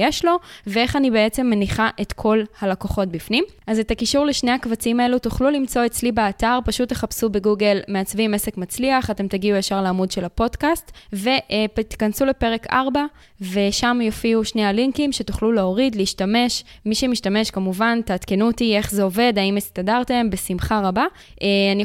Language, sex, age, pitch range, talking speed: Hebrew, female, 20-39, 195-245 Hz, 150 wpm